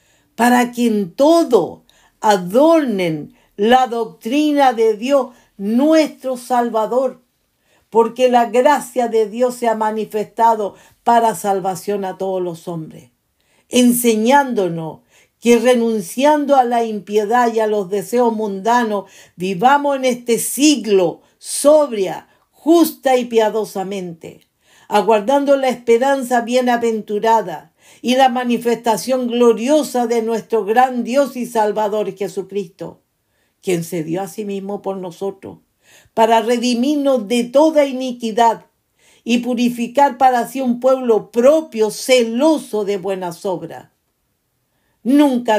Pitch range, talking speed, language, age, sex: 210-255 Hz, 110 wpm, English, 50-69, female